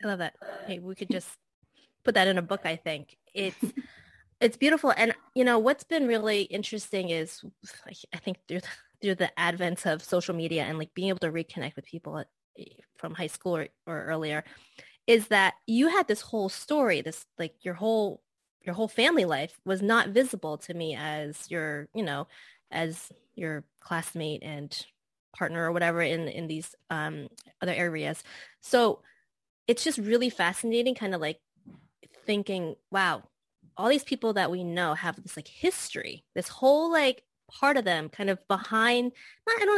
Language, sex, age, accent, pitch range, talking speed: English, female, 20-39, American, 170-230 Hz, 185 wpm